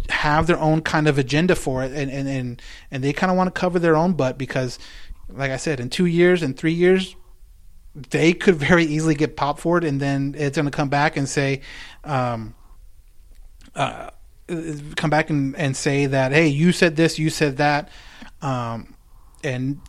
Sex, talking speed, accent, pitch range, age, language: male, 195 wpm, American, 130-160 Hz, 30-49, English